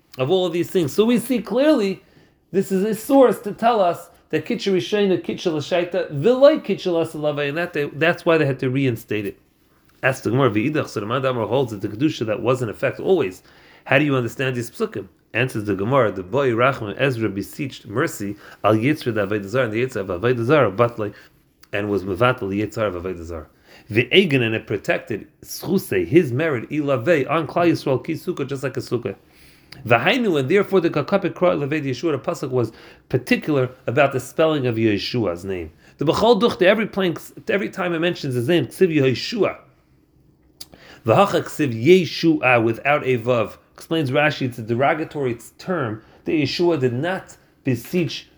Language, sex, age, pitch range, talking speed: English, male, 40-59, 120-175 Hz, 175 wpm